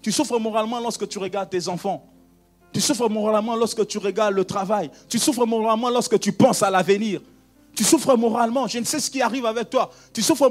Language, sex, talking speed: French, male, 210 wpm